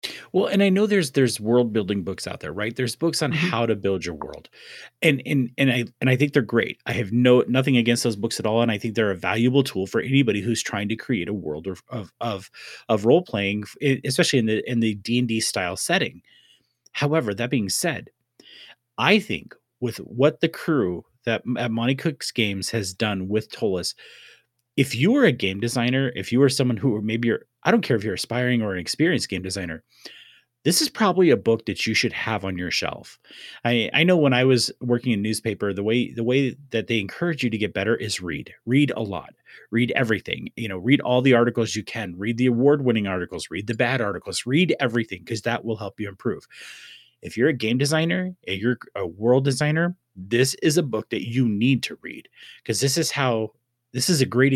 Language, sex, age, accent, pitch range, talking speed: English, male, 30-49, American, 110-135 Hz, 220 wpm